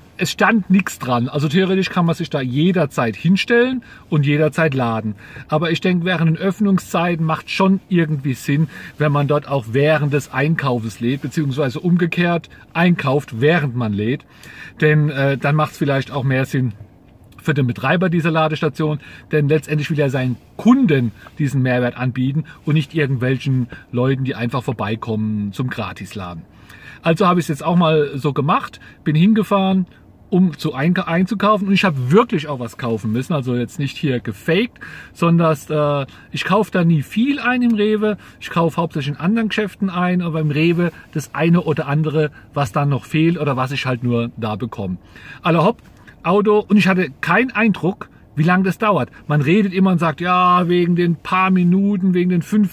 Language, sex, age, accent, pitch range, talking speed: German, male, 40-59, German, 135-180 Hz, 180 wpm